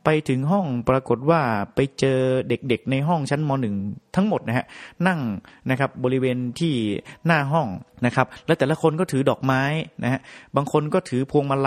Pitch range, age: 120-145 Hz, 30-49